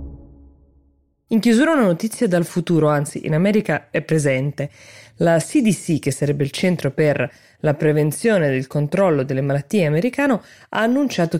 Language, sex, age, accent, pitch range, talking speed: Italian, female, 20-39, native, 140-180 Hz, 145 wpm